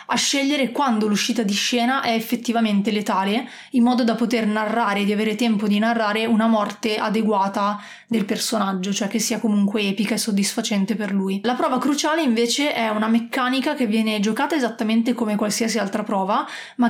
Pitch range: 210-235 Hz